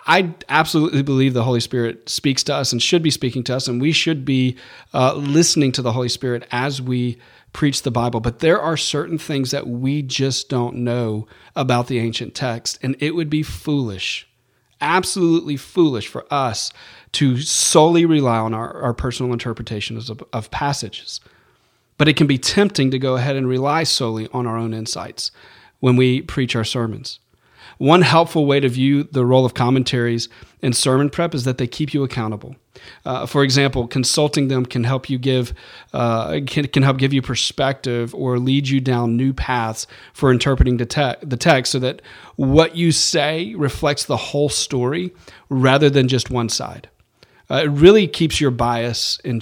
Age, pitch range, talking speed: 40-59, 120-145 Hz, 185 wpm